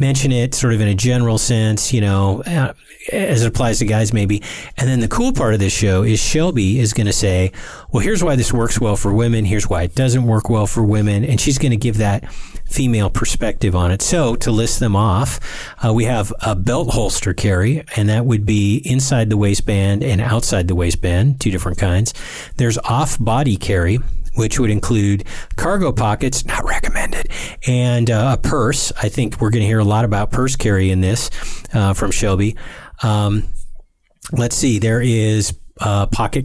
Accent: American